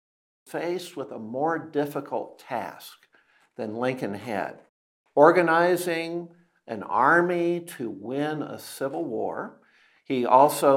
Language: Chinese